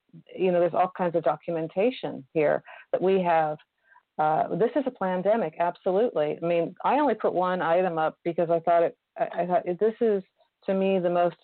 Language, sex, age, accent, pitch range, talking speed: English, female, 40-59, American, 165-195 Hz, 205 wpm